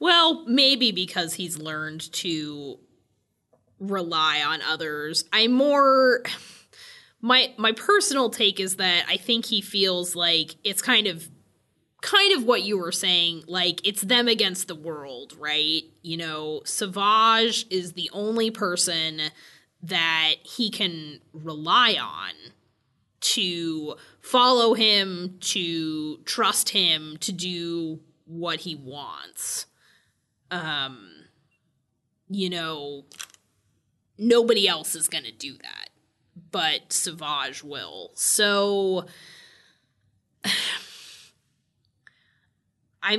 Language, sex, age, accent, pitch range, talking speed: English, female, 20-39, American, 155-210 Hz, 105 wpm